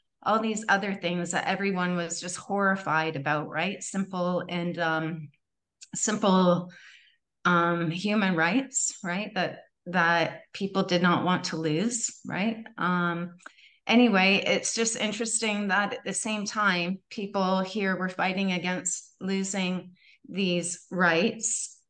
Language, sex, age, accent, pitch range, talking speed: English, female, 30-49, American, 180-215 Hz, 125 wpm